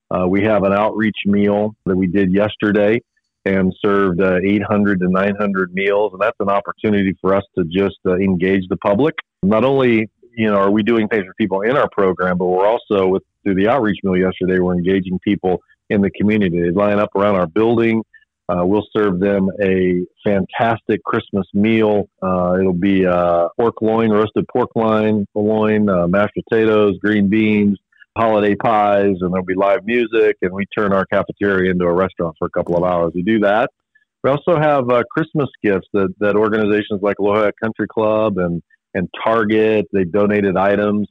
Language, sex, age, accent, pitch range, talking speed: English, male, 40-59, American, 95-110 Hz, 185 wpm